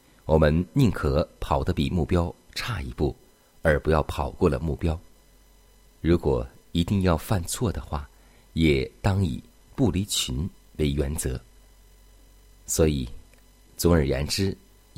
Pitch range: 75-90 Hz